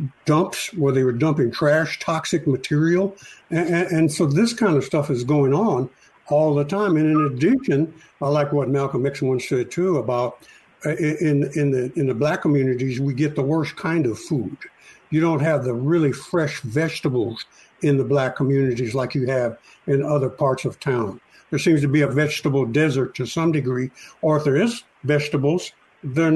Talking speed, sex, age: 190 wpm, male, 60-79